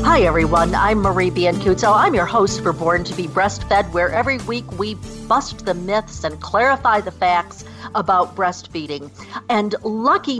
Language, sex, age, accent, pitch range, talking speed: English, female, 50-69, American, 180-235 Hz, 160 wpm